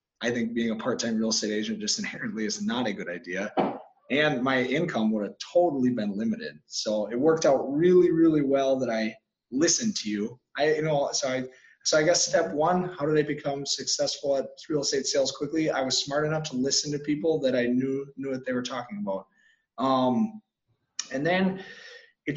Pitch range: 130-220 Hz